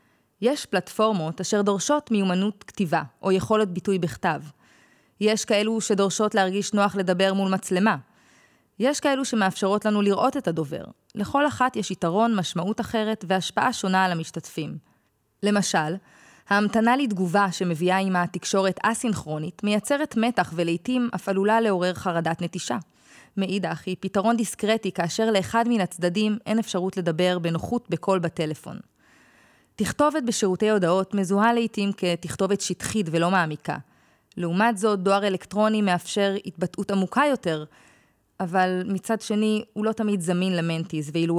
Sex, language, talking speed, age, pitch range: female, Hebrew, 130 wpm, 20-39, 175-215 Hz